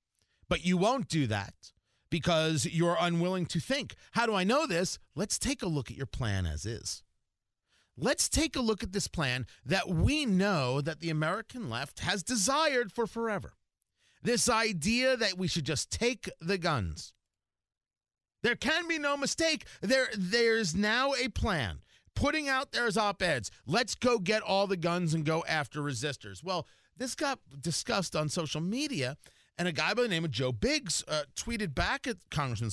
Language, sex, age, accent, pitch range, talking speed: English, male, 40-59, American, 145-235 Hz, 175 wpm